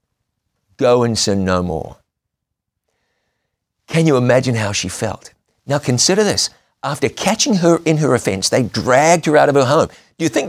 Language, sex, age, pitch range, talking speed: English, male, 50-69, 130-165 Hz, 170 wpm